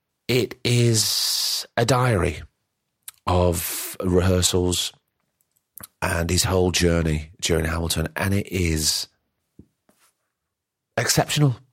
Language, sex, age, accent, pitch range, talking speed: English, male, 40-59, British, 85-100 Hz, 80 wpm